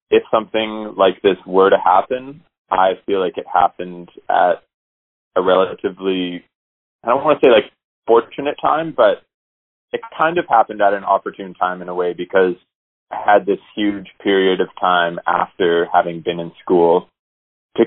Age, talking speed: 20-39, 165 wpm